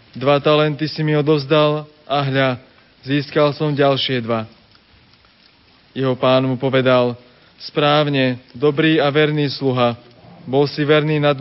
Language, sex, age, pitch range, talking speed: Slovak, male, 20-39, 130-150 Hz, 125 wpm